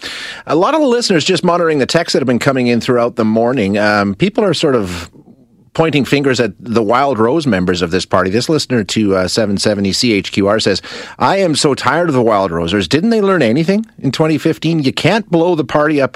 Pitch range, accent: 105-140 Hz, American